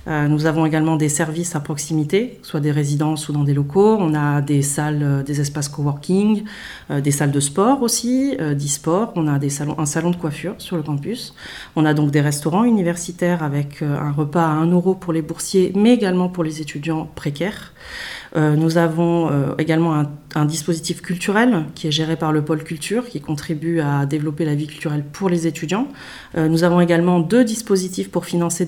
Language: French